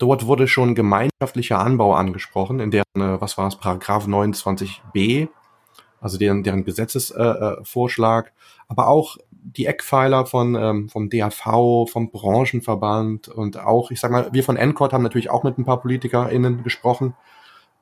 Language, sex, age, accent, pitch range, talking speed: German, male, 30-49, German, 110-130 Hz, 140 wpm